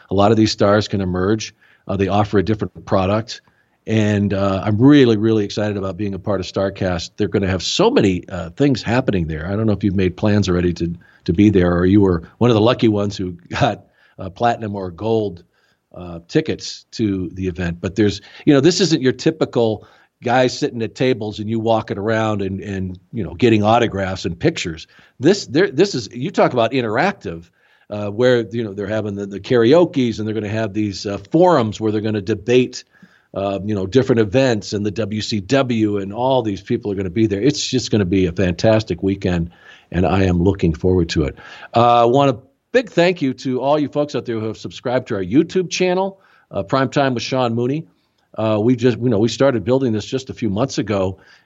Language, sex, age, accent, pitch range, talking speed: English, male, 50-69, American, 95-120 Hz, 225 wpm